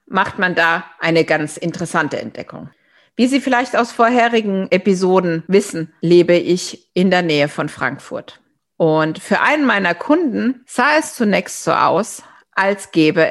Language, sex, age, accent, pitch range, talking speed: German, female, 50-69, German, 155-200 Hz, 150 wpm